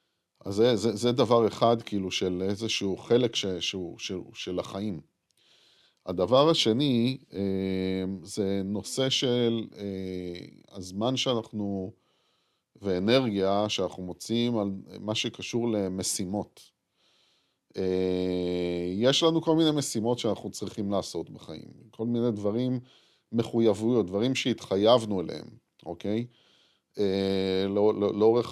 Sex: male